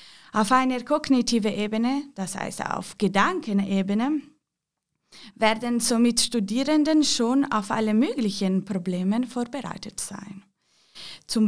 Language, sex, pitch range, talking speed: English, female, 195-250 Hz, 100 wpm